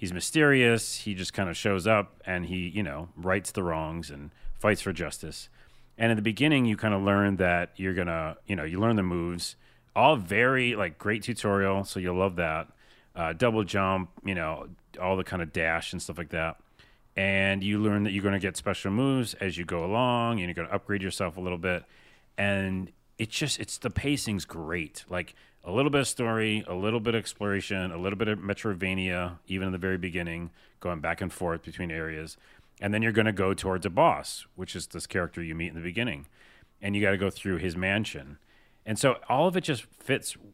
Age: 30-49